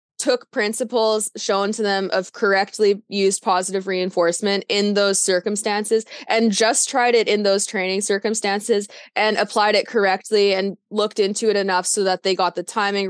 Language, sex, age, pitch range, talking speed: English, female, 20-39, 185-215 Hz, 165 wpm